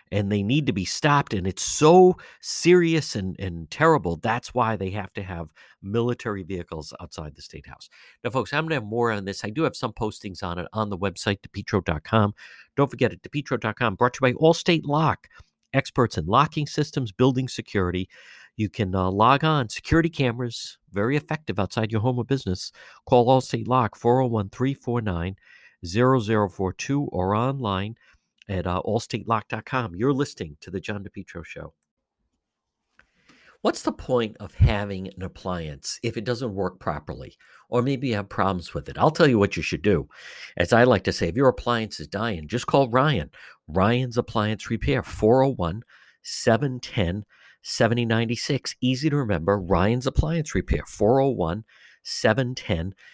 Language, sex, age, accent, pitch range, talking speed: English, male, 50-69, American, 95-130 Hz, 160 wpm